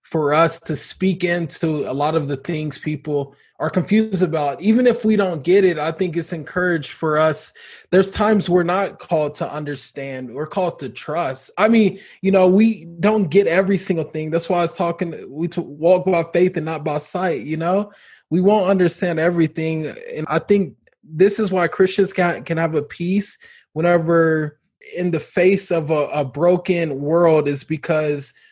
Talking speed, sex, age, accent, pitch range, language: 185 wpm, male, 20-39, American, 155-185 Hz, English